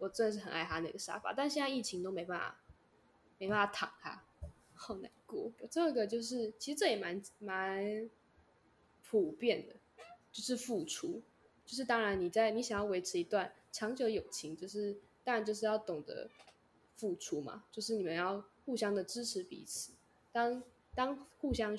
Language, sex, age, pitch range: Chinese, female, 10-29, 190-245 Hz